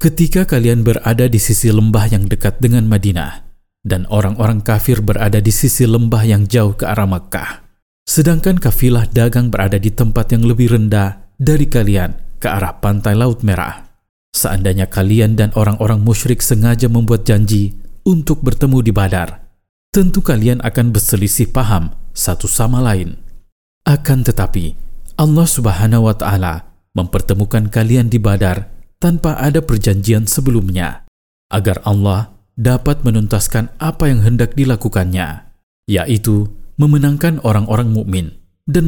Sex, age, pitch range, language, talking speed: male, 40-59, 100-120 Hz, Indonesian, 130 wpm